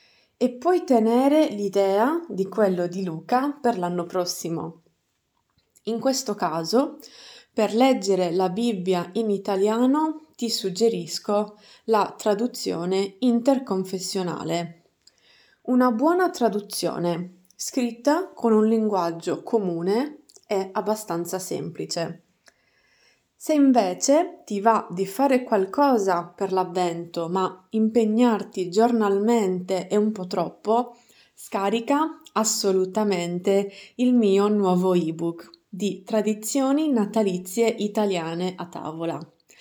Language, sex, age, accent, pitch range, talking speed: Italian, female, 20-39, native, 185-240 Hz, 95 wpm